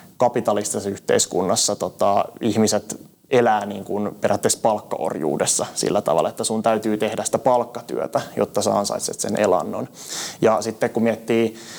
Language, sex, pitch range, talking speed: Finnish, male, 105-115 Hz, 125 wpm